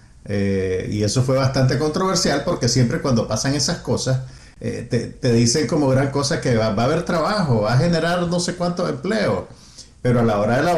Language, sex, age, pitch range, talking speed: Spanish, male, 50-69, 110-145 Hz, 210 wpm